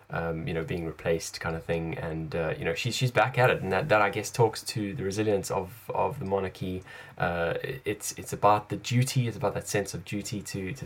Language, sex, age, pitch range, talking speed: English, male, 10-29, 100-135 Hz, 245 wpm